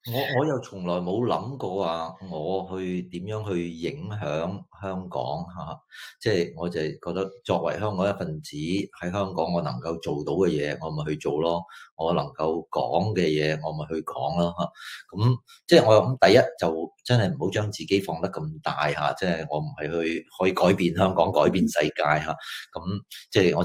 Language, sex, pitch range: Chinese, male, 80-105 Hz